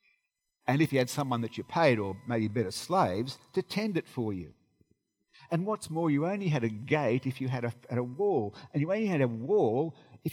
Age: 50-69